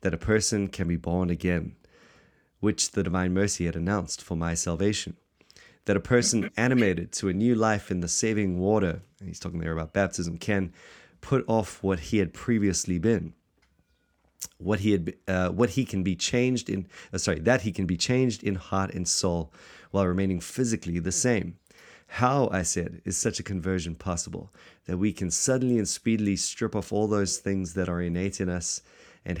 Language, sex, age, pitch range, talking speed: English, male, 30-49, 90-110 Hz, 190 wpm